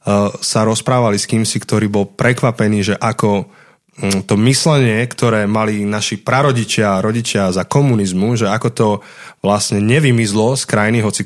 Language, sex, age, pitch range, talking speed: Slovak, male, 20-39, 105-125 Hz, 145 wpm